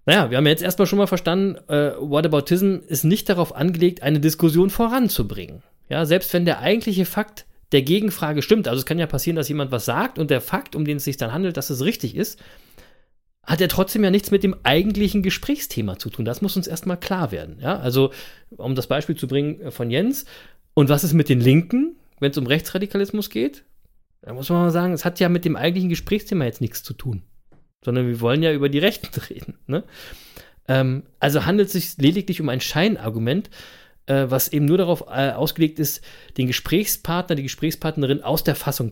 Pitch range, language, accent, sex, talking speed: 135-185 Hz, German, German, male, 210 wpm